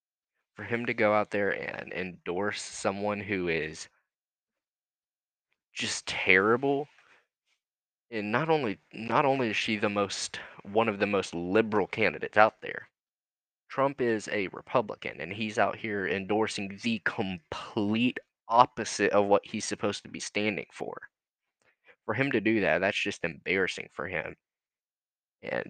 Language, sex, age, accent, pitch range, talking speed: English, male, 20-39, American, 95-115 Hz, 140 wpm